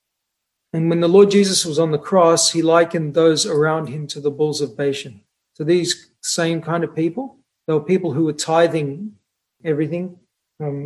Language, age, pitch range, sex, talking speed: English, 40-59, 145-175 Hz, male, 180 wpm